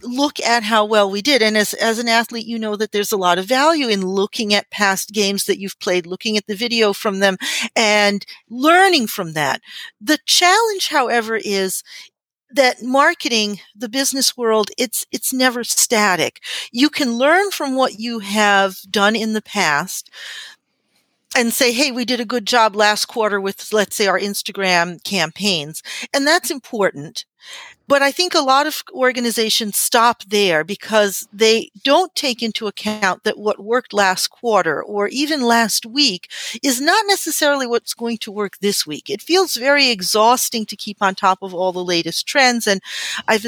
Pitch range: 200-255 Hz